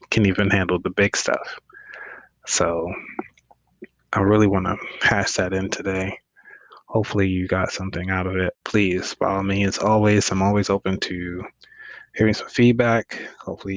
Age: 20-39